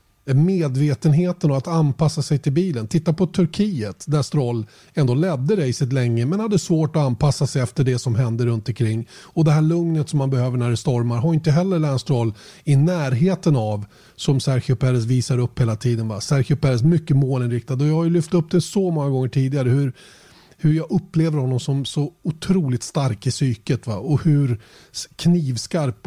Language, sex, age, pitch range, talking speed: Swedish, male, 30-49, 125-155 Hz, 195 wpm